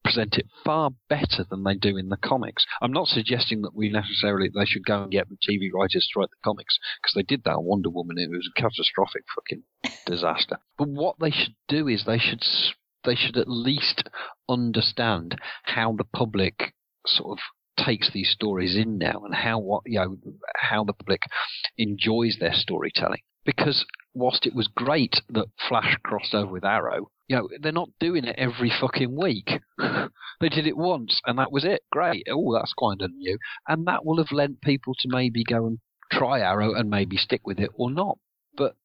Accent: British